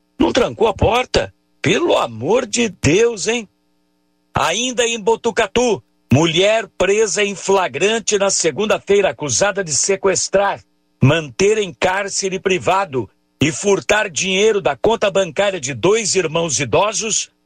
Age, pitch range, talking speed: 60-79, 150-220 Hz, 120 wpm